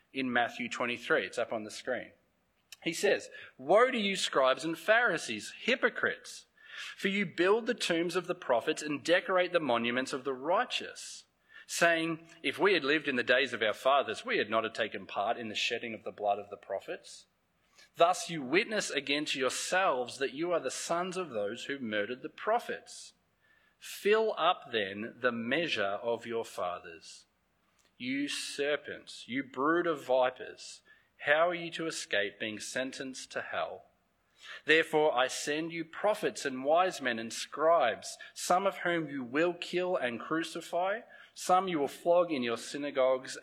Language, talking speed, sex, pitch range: English, 170 wpm, male, 125-180 Hz